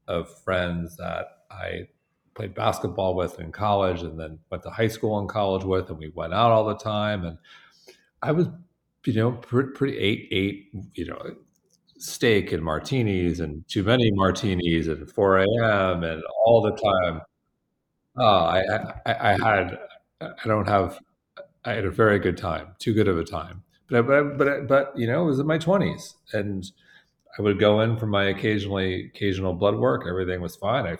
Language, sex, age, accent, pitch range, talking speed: English, male, 40-59, American, 95-150 Hz, 185 wpm